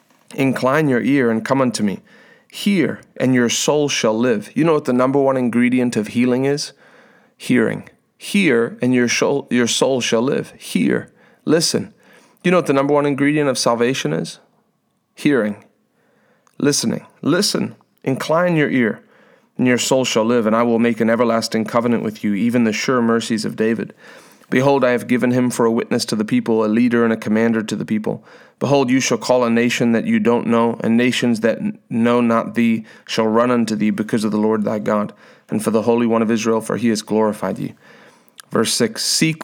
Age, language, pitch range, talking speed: 30-49, English, 115-135 Hz, 200 wpm